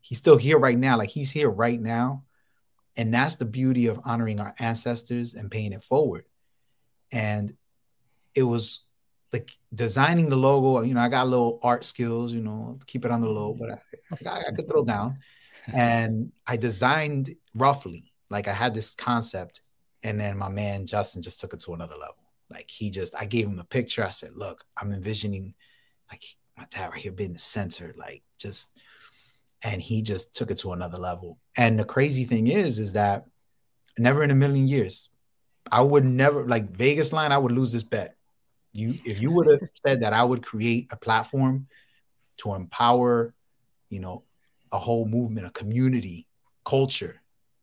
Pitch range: 110-130 Hz